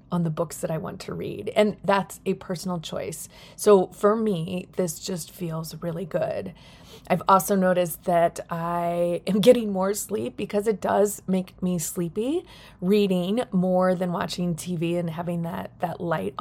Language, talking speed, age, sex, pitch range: English, 170 wpm, 30-49, female, 175-195 Hz